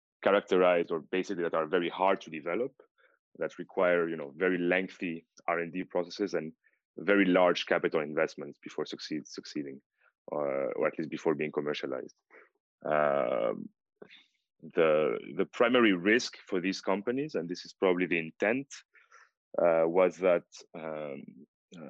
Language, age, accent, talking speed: English, 30-49, French, 135 wpm